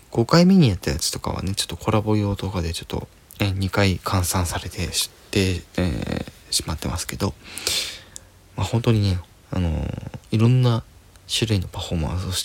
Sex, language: male, Japanese